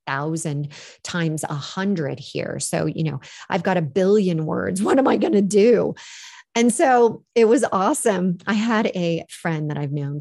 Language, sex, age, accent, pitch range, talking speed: English, female, 40-59, American, 165-250 Hz, 180 wpm